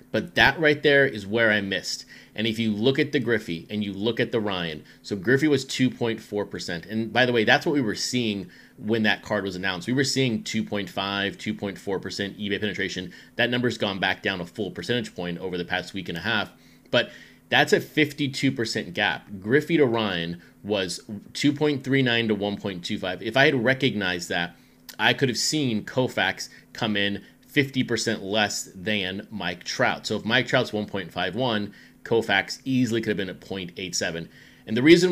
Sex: male